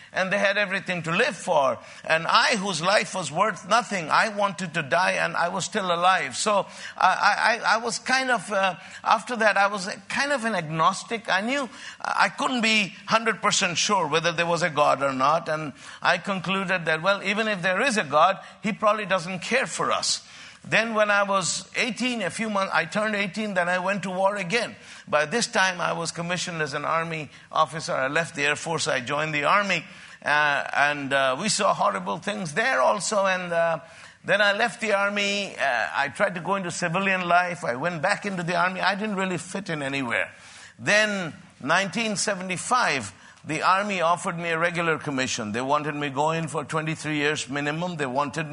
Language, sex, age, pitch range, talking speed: English, male, 50-69, 165-205 Hz, 200 wpm